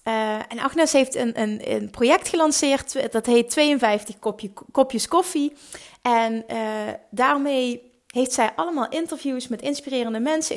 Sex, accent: female, Dutch